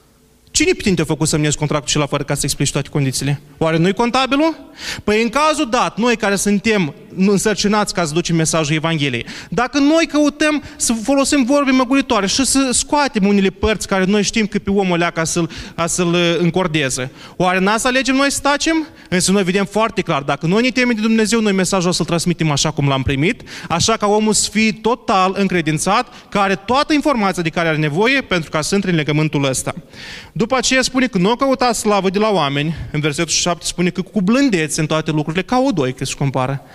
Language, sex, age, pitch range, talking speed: Romanian, male, 20-39, 155-235 Hz, 210 wpm